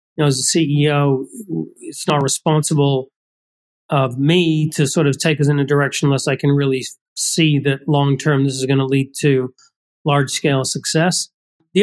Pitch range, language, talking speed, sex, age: 145-170 Hz, English, 185 wpm, male, 40-59